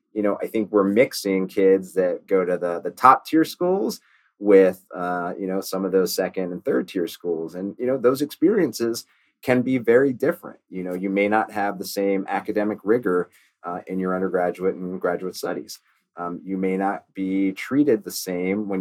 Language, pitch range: English, 90-105 Hz